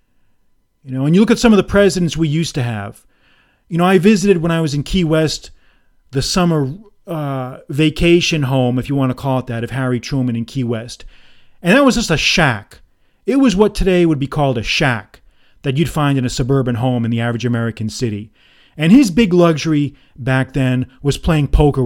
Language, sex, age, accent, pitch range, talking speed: English, male, 40-59, American, 130-185 Hz, 215 wpm